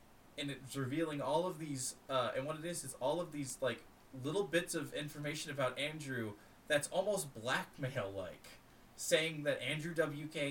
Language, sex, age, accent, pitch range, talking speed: English, male, 20-39, American, 120-155 Hz, 165 wpm